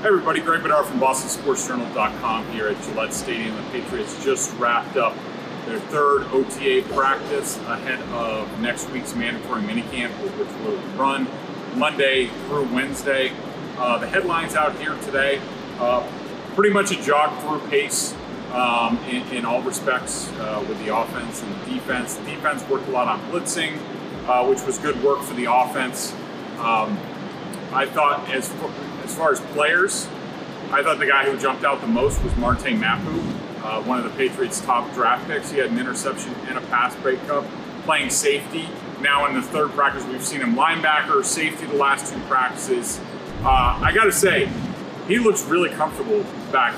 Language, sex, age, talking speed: English, male, 30-49, 170 wpm